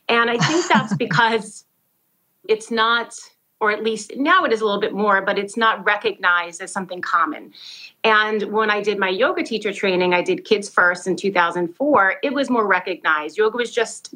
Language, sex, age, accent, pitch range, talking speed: English, female, 30-49, American, 185-230 Hz, 190 wpm